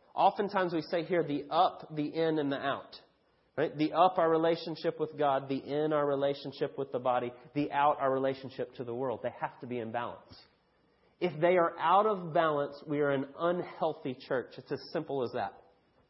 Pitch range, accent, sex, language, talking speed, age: 135-170 Hz, American, male, English, 200 wpm, 30-49